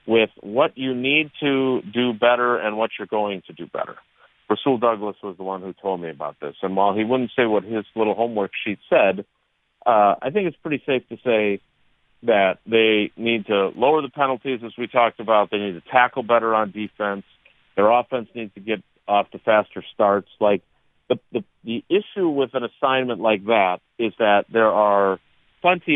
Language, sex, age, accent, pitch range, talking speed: English, male, 50-69, American, 100-125 Hz, 200 wpm